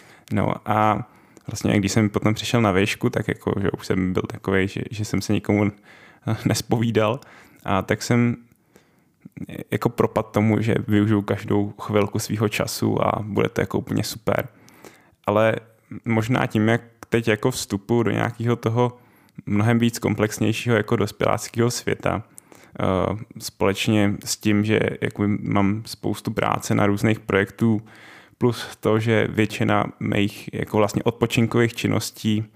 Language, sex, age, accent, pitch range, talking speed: Czech, male, 10-29, native, 105-120 Hz, 140 wpm